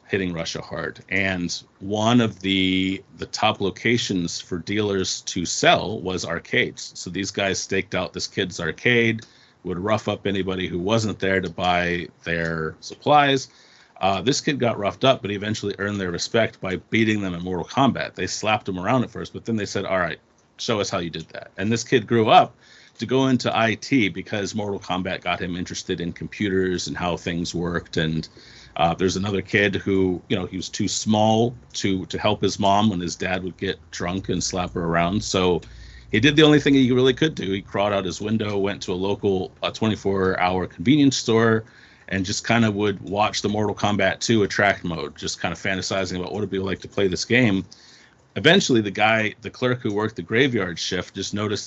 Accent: American